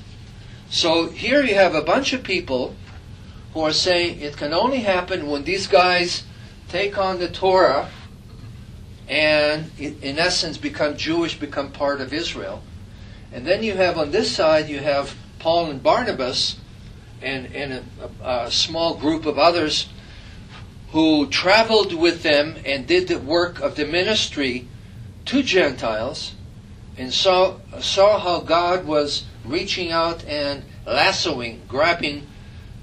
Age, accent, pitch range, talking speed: 50-69, American, 110-165 Hz, 135 wpm